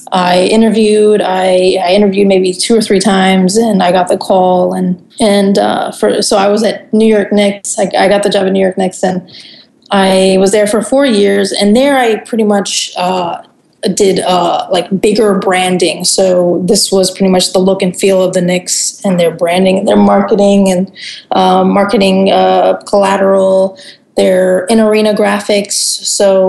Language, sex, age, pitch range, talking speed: English, female, 20-39, 185-210 Hz, 185 wpm